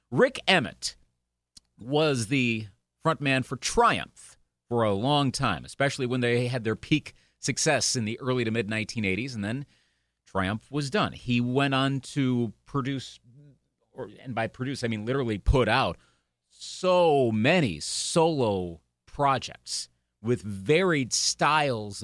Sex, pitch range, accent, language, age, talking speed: male, 105-145 Hz, American, English, 40-59, 135 wpm